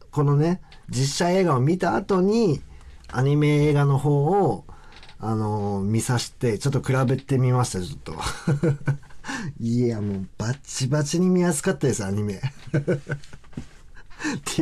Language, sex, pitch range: Japanese, male, 105-155 Hz